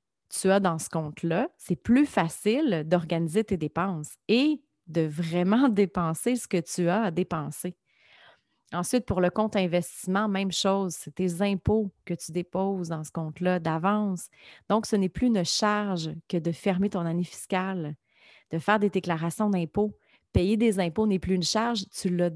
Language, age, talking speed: French, 30-49, 170 wpm